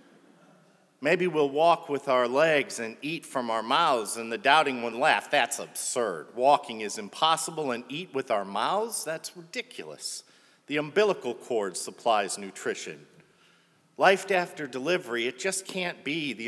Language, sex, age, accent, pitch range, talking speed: English, male, 50-69, American, 140-195 Hz, 150 wpm